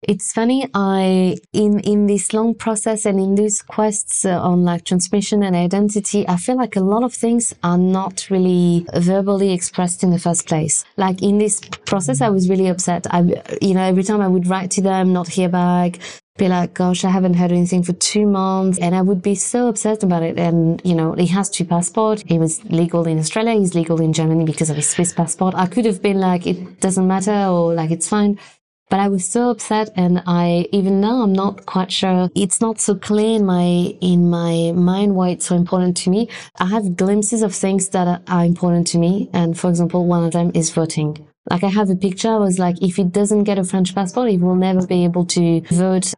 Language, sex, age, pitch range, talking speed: English, female, 20-39, 175-205 Hz, 225 wpm